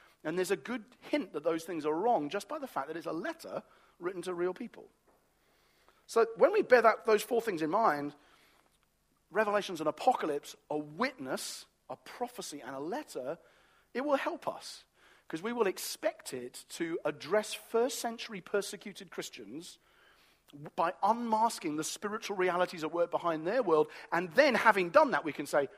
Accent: British